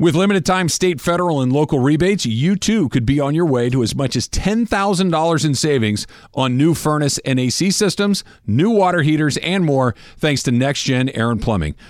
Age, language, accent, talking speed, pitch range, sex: 50-69, English, American, 190 wpm, 125-170 Hz, male